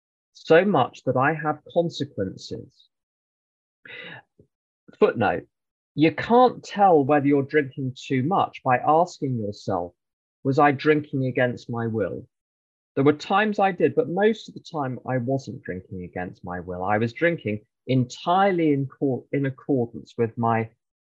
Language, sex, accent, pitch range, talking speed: English, male, British, 100-145 Hz, 140 wpm